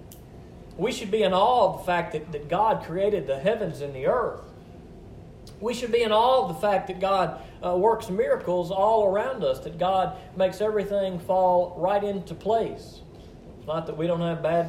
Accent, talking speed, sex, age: American, 195 wpm, male, 40-59